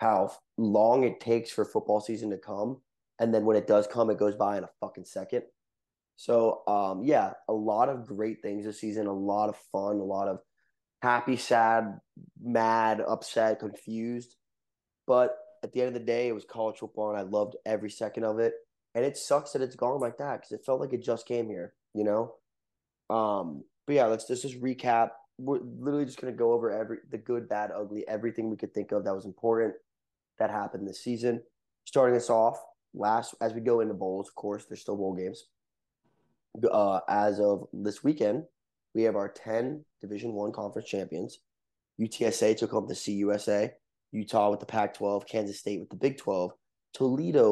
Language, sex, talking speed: English, male, 195 wpm